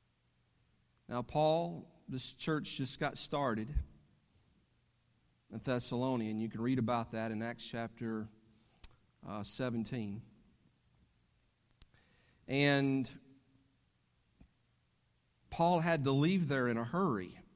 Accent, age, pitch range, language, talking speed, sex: American, 50-69, 110-140 Hz, English, 95 wpm, male